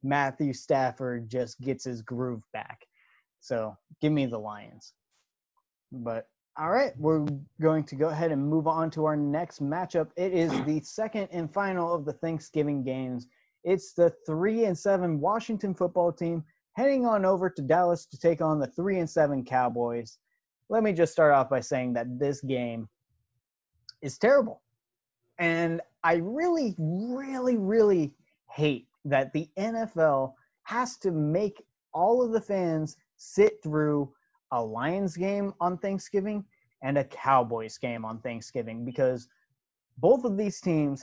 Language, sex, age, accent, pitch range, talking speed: English, male, 20-39, American, 135-195 Hz, 150 wpm